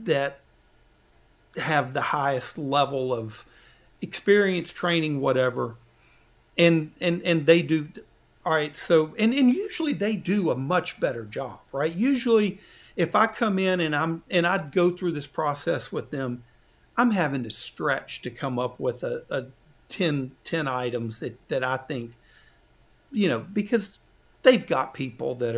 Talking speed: 155 wpm